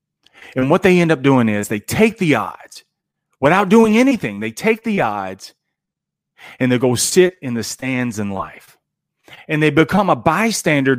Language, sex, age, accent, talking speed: English, male, 30-49, American, 175 wpm